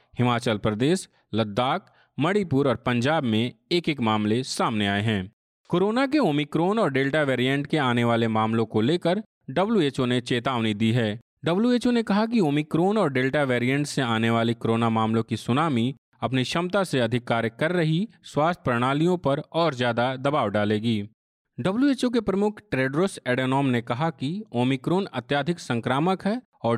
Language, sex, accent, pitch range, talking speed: Hindi, male, native, 120-175 Hz, 160 wpm